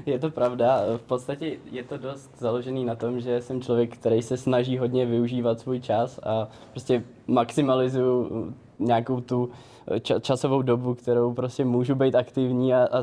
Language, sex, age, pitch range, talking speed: Czech, male, 20-39, 115-125 Hz, 155 wpm